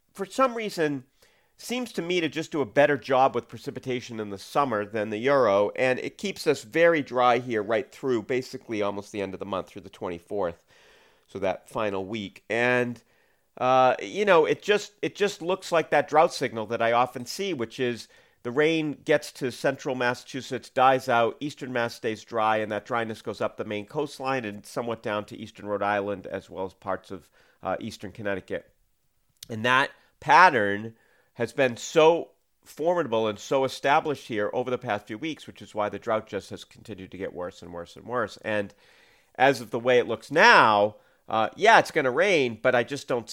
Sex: male